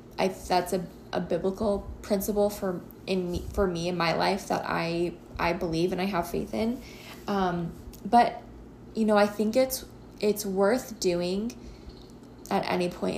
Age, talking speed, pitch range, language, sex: 20-39, 165 wpm, 175-200 Hz, English, female